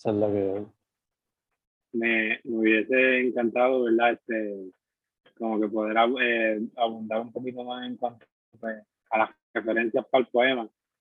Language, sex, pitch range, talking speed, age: Spanish, male, 110-120 Hz, 130 wpm, 20-39